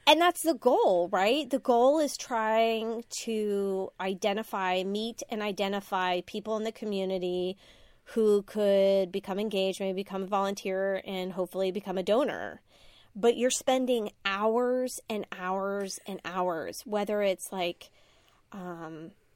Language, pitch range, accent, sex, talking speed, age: English, 190-250 Hz, American, female, 135 wpm, 30-49